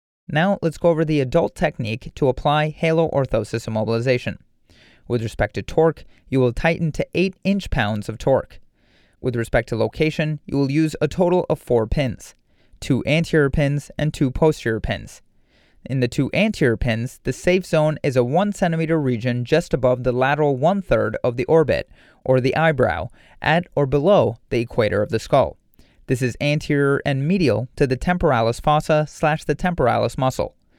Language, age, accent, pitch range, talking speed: English, 30-49, American, 120-160 Hz, 175 wpm